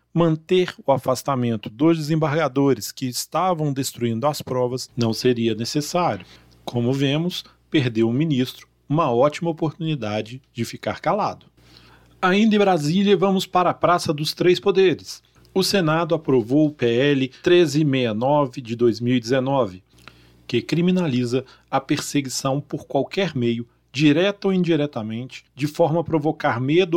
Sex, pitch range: male, 125-170 Hz